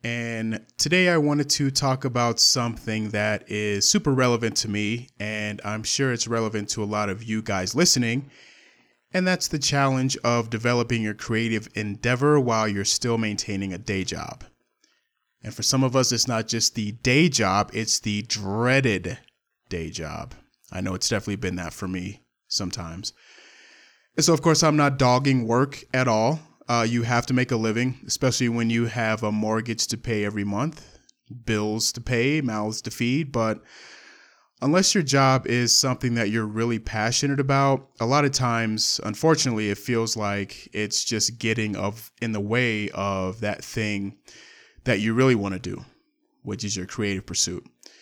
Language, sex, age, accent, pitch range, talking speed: English, male, 30-49, American, 105-130 Hz, 175 wpm